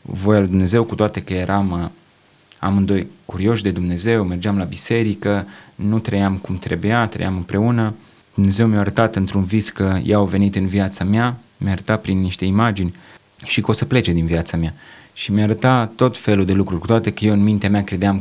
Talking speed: 195 wpm